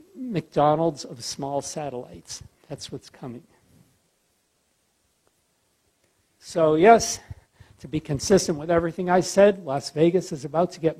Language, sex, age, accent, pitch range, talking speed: English, male, 60-79, American, 140-175 Hz, 120 wpm